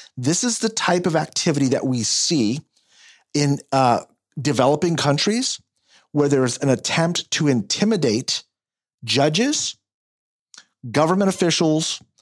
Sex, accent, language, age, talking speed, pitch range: male, American, English, 40-59, 110 wpm, 130-170 Hz